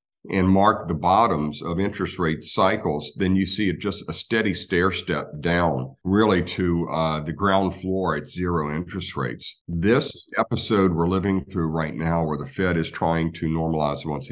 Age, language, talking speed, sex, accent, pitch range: 50-69, English, 180 wpm, male, American, 80-95 Hz